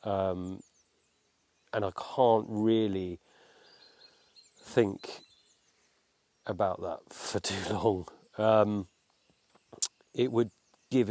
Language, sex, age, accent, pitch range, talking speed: English, male, 30-49, British, 100-130 Hz, 80 wpm